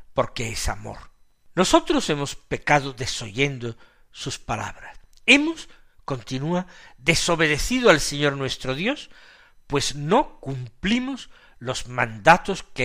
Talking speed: 105 wpm